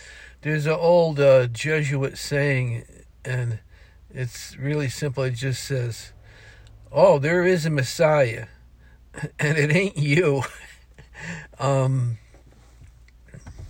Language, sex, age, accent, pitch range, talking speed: English, male, 60-79, American, 115-140 Hz, 100 wpm